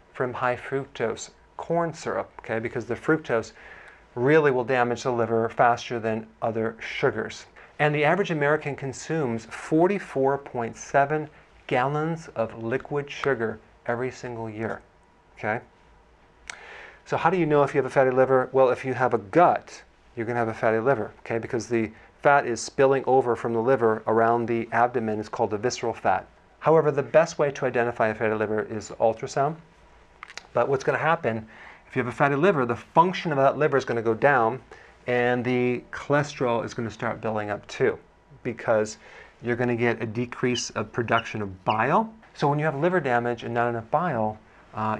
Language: English